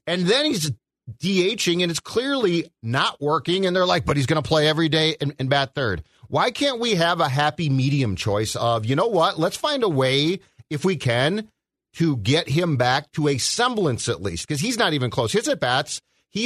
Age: 40-59